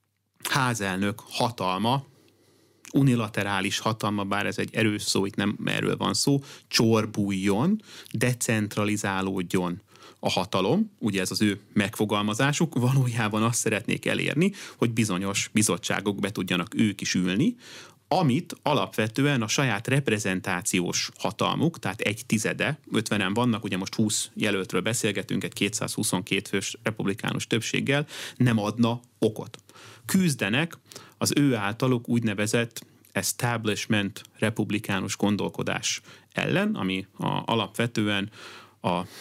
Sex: male